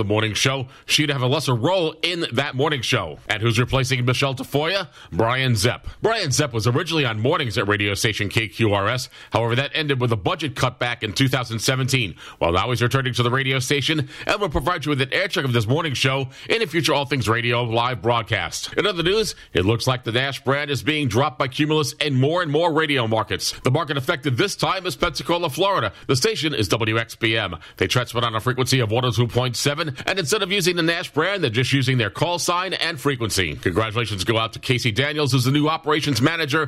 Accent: American